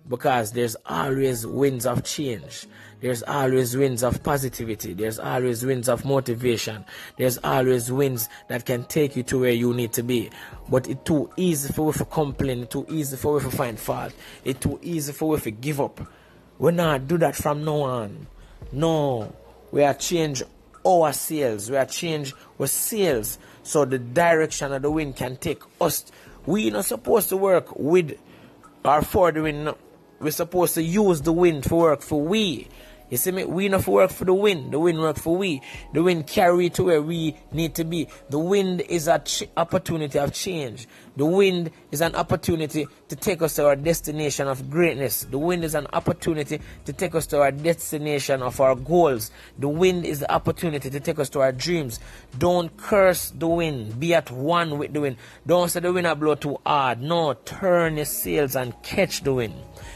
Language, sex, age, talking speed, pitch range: English, male, 30-49, 200 wpm, 130-165 Hz